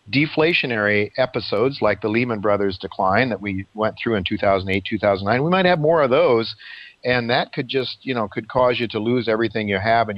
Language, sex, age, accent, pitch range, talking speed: English, male, 50-69, American, 105-135 Hz, 205 wpm